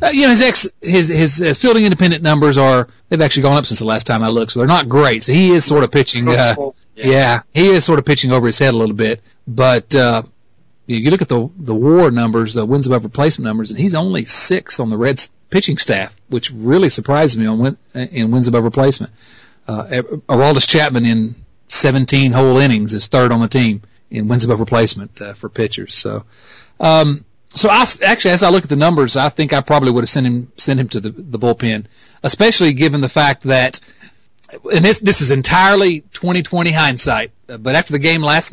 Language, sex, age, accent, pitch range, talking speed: English, male, 40-59, American, 115-155 Hz, 215 wpm